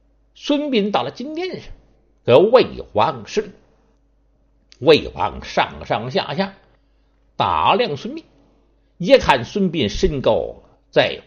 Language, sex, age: Chinese, male, 60-79